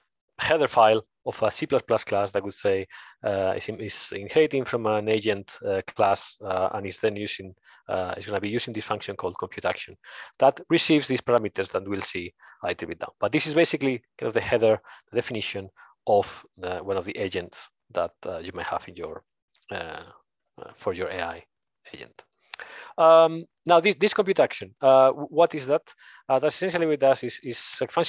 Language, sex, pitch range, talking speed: English, male, 110-150 Hz, 190 wpm